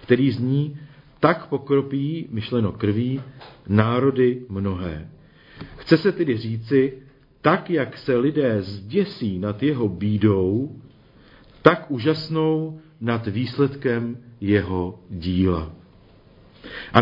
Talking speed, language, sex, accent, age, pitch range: 95 wpm, Czech, male, native, 50-69, 110-145 Hz